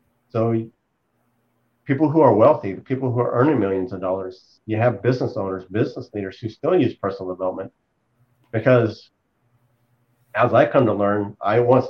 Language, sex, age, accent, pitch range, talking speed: English, male, 40-59, American, 110-125 Hz, 160 wpm